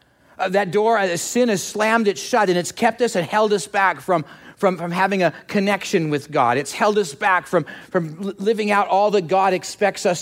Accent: American